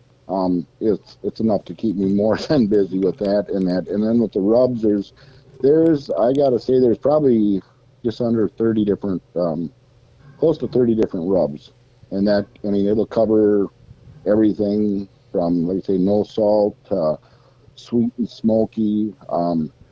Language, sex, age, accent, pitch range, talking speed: English, male, 50-69, American, 100-125 Hz, 165 wpm